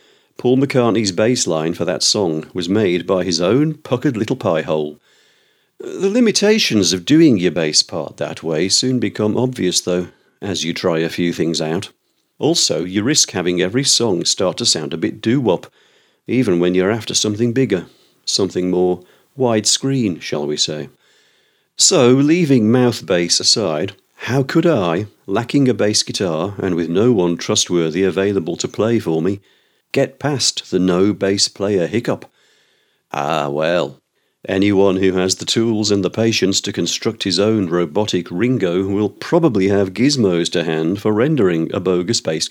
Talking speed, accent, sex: 160 wpm, British, male